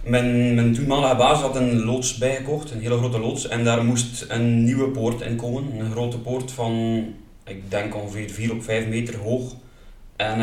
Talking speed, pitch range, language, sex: 190 wpm, 110-125 Hz, Dutch, male